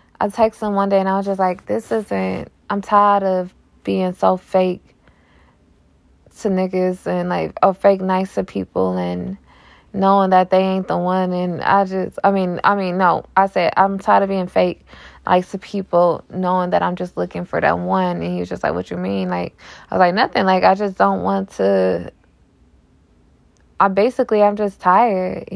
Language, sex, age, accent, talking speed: English, female, 20-39, American, 200 wpm